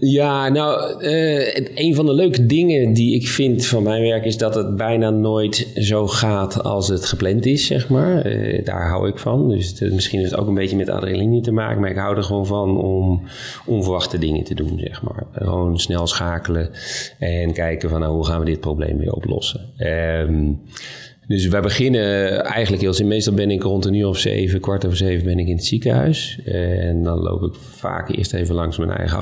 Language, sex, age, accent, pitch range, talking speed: Dutch, male, 30-49, Dutch, 85-110 Hz, 215 wpm